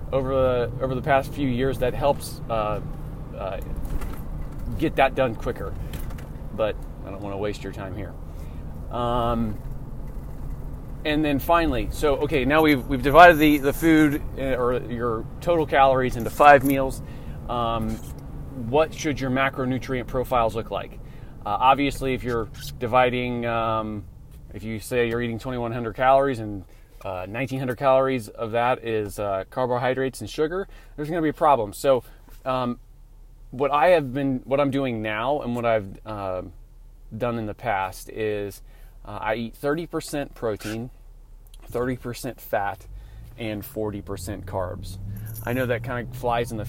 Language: English